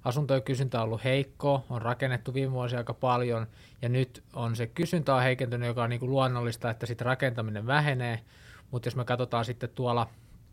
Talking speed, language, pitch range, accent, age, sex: 180 wpm, Finnish, 115-130 Hz, native, 20-39, male